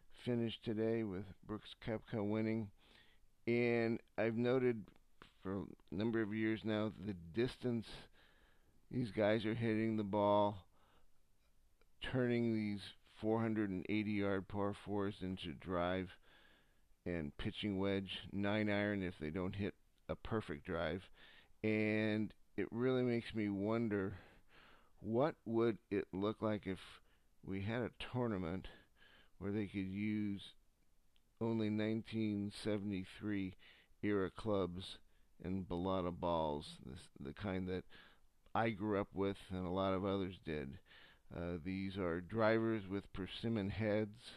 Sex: male